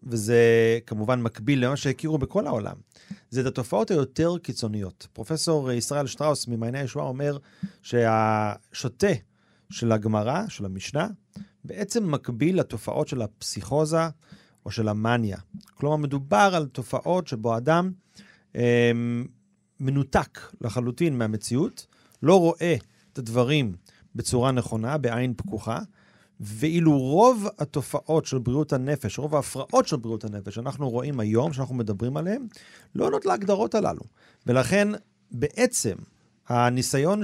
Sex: male